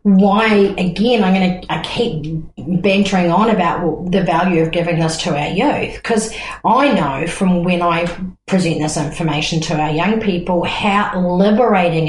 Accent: Australian